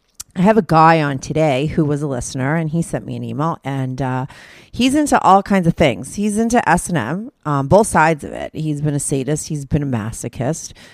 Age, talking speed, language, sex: 30-49, 215 wpm, English, female